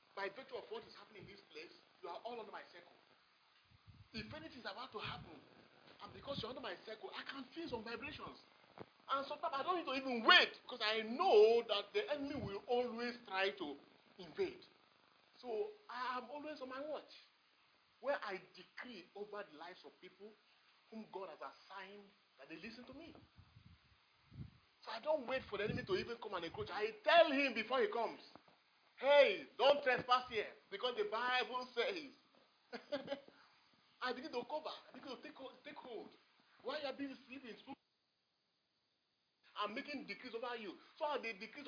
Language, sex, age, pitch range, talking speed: English, male, 40-59, 225-305 Hz, 180 wpm